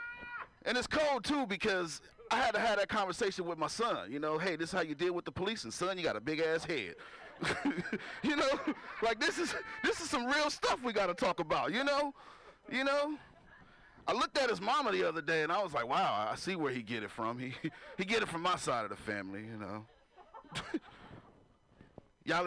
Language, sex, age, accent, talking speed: English, male, 30-49, American, 225 wpm